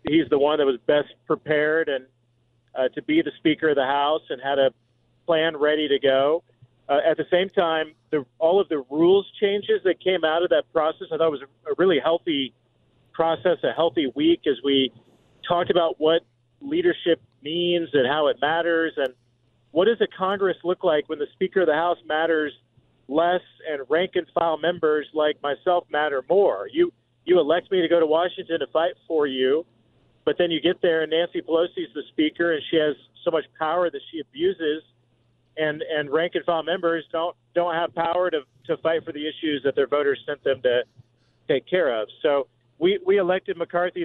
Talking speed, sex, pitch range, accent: 195 wpm, male, 140-175 Hz, American